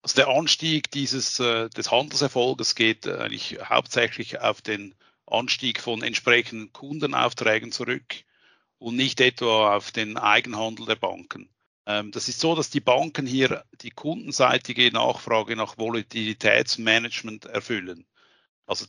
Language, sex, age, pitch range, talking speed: German, male, 50-69, 110-135 Hz, 120 wpm